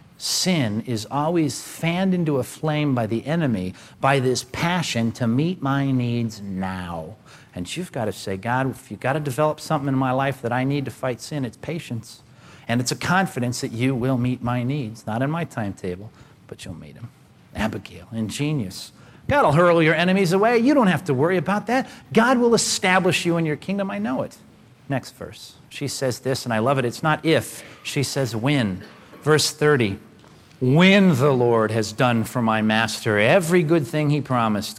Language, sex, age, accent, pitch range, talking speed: English, male, 50-69, American, 115-170 Hz, 195 wpm